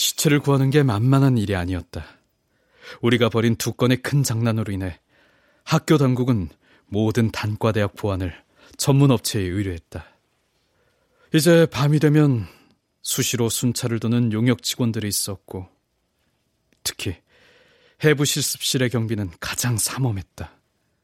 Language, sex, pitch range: Korean, male, 105-140 Hz